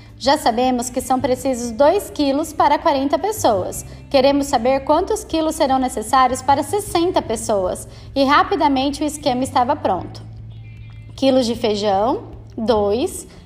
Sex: female